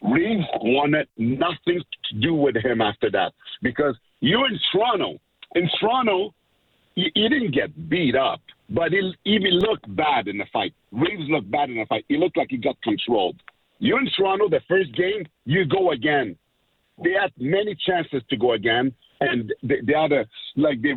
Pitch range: 125-185 Hz